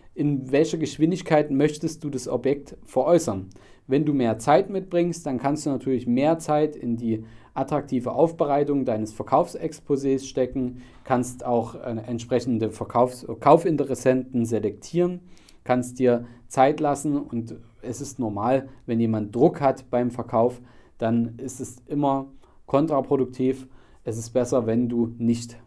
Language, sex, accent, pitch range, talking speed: German, male, German, 120-155 Hz, 130 wpm